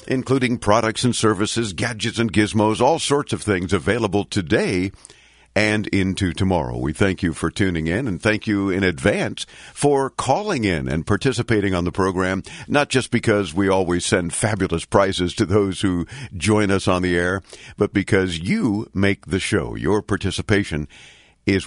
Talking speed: 165 wpm